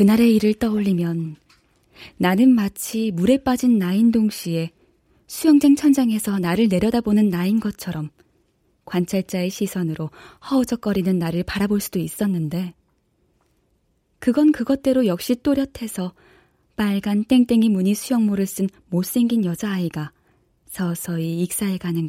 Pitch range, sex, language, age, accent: 180-250 Hz, female, Korean, 20-39, native